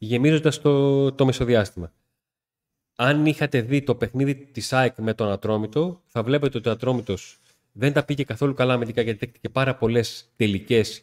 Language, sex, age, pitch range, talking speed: Greek, male, 30-49, 110-140 Hz, 160 wpm